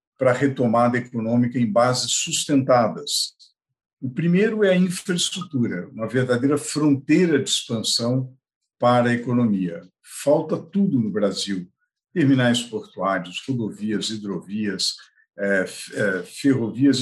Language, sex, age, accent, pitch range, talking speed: Portuguese, male, 50-69, Brazilian, 120-150 Hz, 100 wpm